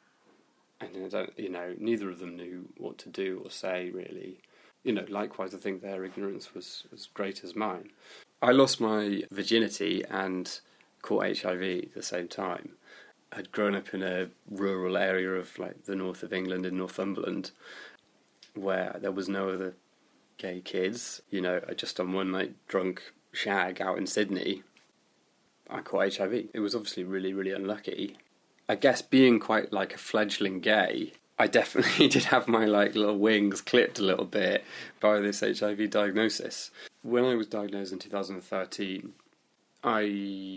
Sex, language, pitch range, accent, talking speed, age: male, English, 95-105 Hz, British, 160 wpm, 20-39